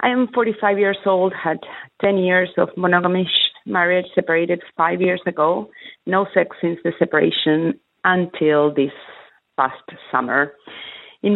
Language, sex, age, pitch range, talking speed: English, female, 30-49, 145-175 Hz, 130 wpm